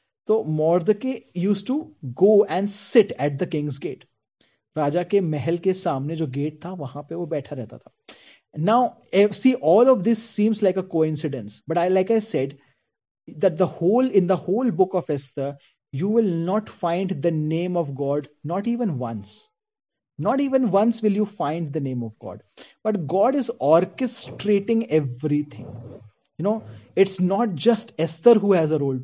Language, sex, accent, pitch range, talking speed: Hindi, male, native, 150-210 Hz, 175 wpm